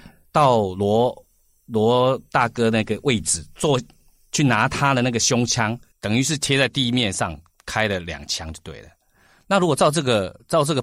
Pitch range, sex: 90-125 Hz, male